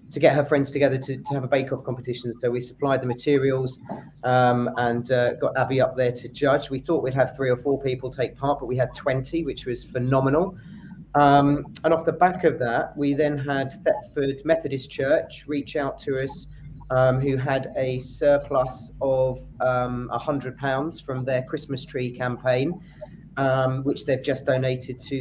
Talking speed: 190 wpm